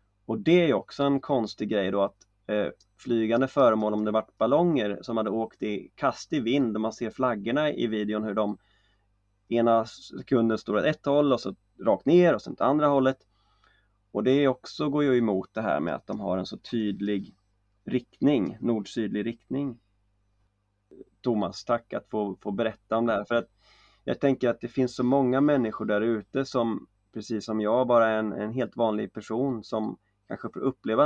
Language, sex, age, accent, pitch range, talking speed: Swedish, male, 30-49, native, 100-120 Hz, 195 wpm